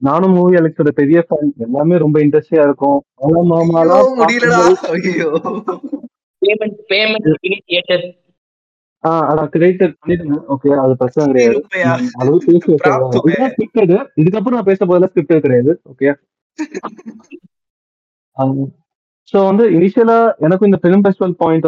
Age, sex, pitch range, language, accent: 30-49, male, 145-195 Hz, Tamil, native